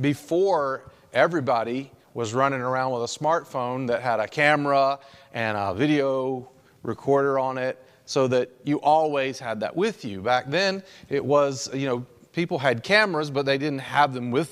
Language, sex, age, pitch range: English, male, 40-59, 120-150 Hz